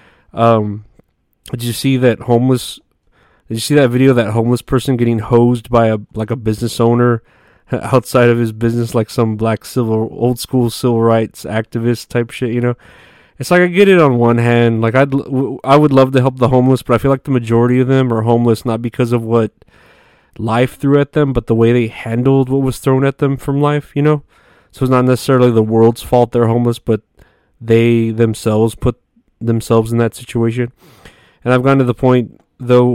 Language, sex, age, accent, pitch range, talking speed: English, male, 20-39, American, 110-125 Hz, 205 wpm